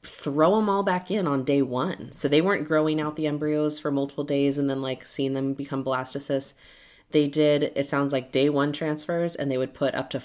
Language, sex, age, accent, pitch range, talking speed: English, female, 20-39, American, 130-155 Hz, 230 wpm